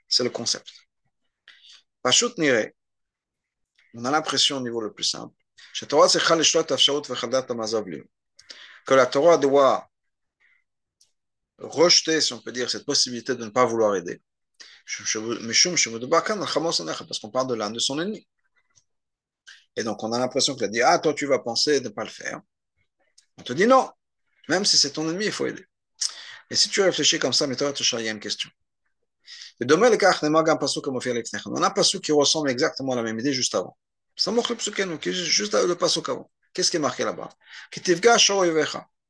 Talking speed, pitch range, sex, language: 145 wpm, 125-180 Hz, male, French